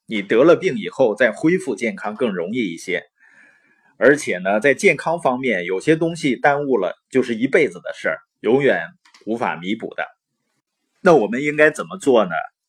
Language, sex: Chinese, male